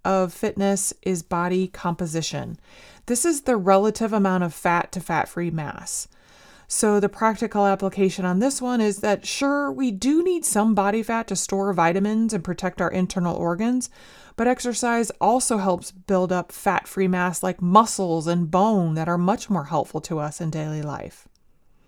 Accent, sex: American, female